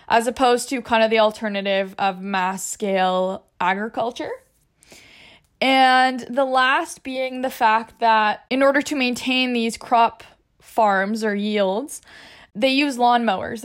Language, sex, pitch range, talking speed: English, female, 210-250 Hz, 130 wpm